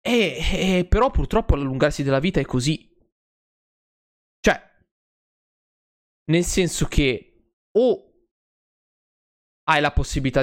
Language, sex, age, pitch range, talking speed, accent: Italian, male, 20-39, 130-165 Hz, 100 wpm, native